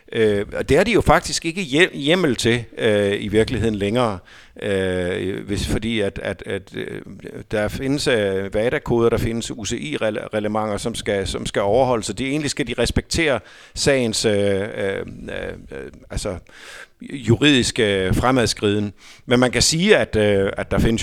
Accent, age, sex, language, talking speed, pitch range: native, 50-69, male, Danish, 150 wpm, 100-125 Hz